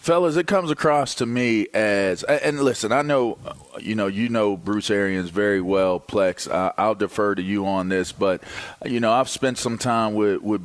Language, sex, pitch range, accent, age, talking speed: English, male, 100-125 Hz, American, 40-59, 205 wpm